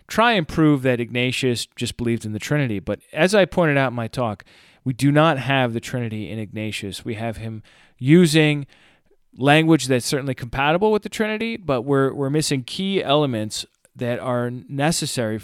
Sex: male